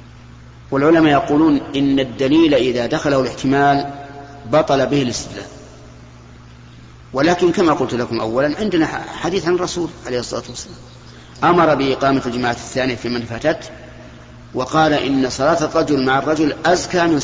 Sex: male